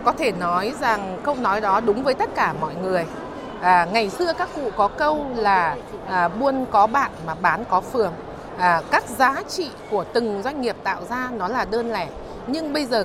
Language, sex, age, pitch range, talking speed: Vietnamese, female, 20-39, 210-285 Hz, 200 wpm